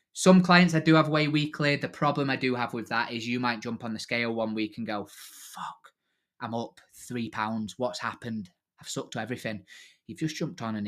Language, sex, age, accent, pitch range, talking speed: English, male, 20-39, British, 110-145 Hz, 225 wpm